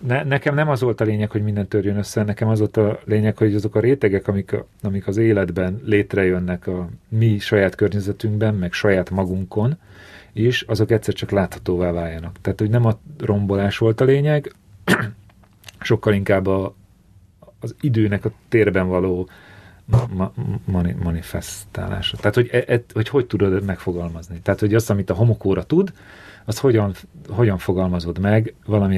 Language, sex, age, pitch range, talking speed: Hungarian, male, 40-59, 95-120 Hz, 160 wpm